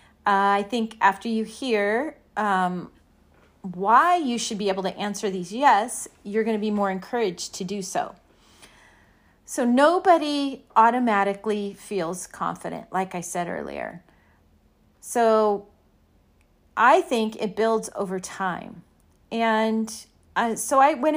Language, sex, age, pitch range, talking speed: English, female, 40-59, 195-240 Hz, 130 wpm